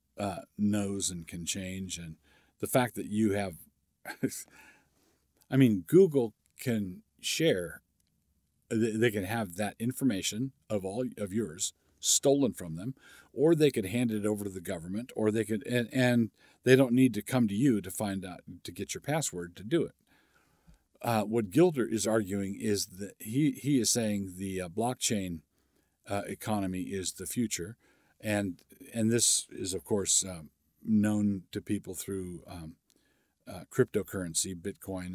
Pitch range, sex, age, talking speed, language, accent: 90-120 Hz, male, 50-69, 160 wpm, English, American